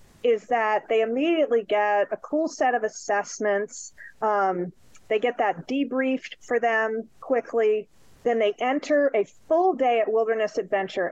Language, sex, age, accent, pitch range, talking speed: English, female, 40-59, American, 205-260 Hz, 145 wpm